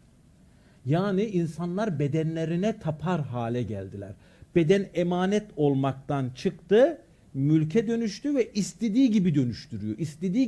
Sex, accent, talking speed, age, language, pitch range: male, native, 95 wpm, 50-69, Turkish, 135-215 Hz